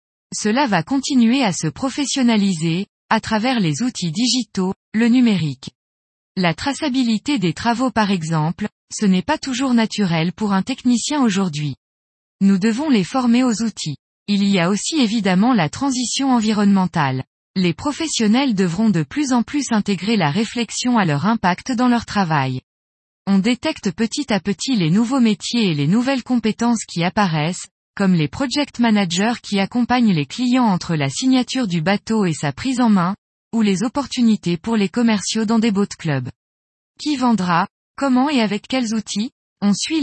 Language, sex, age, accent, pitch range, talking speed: French, female, 20-39, French, 180-245 Hz, 165 wpm